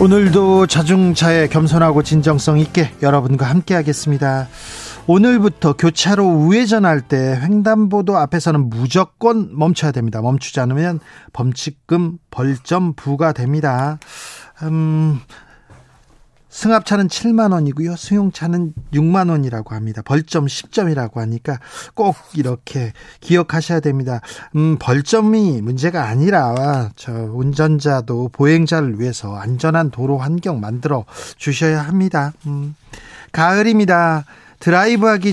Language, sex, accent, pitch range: Korean, male, native, 135-170 Hz